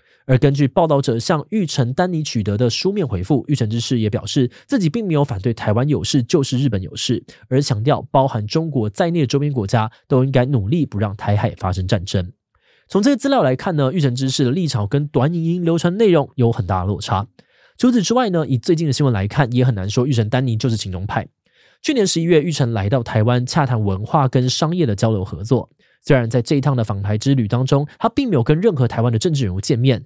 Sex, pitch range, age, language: male, 115-150 Hz, 20-39, Chinese